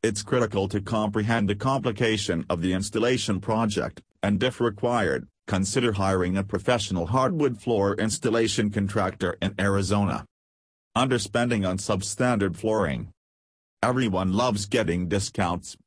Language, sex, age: English, male, 40-59